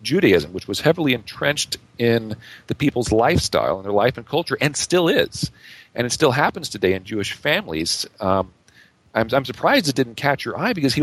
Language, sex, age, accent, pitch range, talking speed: English, male, 40-59, American, 115-145 Hz, 195 wpm